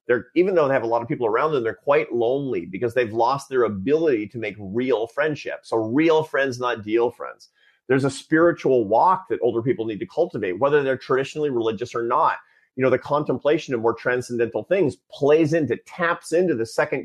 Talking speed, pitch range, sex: 205 wpm, 125-175 Hz, male